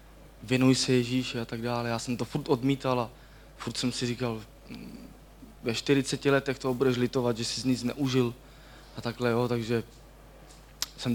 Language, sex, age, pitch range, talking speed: Czech, male, 20-39, 115-130 Hz, 170 wpm